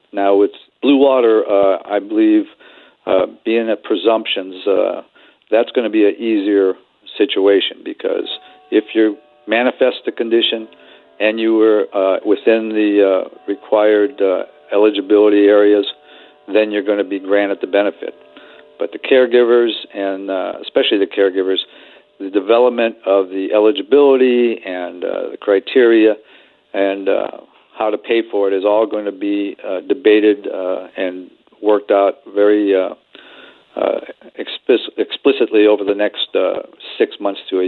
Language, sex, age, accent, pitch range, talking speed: English, male, 50-69, American, 100-115 Hz, 145 wpm